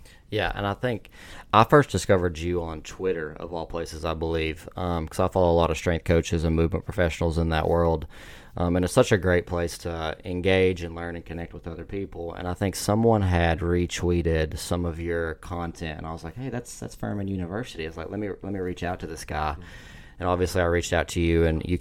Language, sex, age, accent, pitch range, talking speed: English, male, 20-39, American, 80-90 Hz, 240 wpm